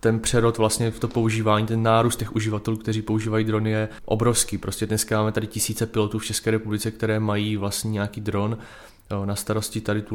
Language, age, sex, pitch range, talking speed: Czech, 20-39, male, 110-115 Hz, 195 wpm